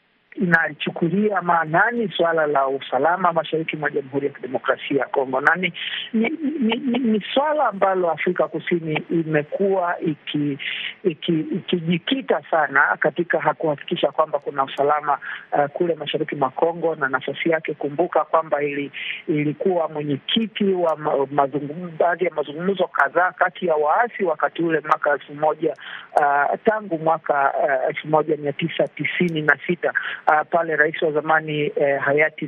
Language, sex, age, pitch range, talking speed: Swahili, male, 50-69, 145-180 Hz, 120 wpm